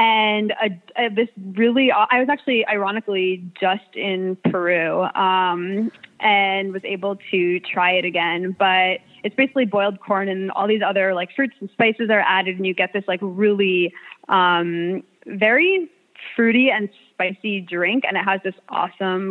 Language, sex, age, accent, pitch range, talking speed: English, female, 20-39, American, 185-220 Hz, 160 wpm